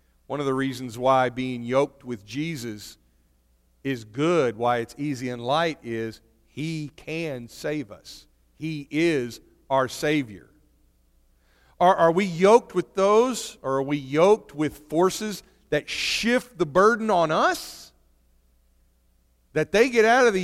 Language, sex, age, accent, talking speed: English, male, 50-69, American, 145 wpm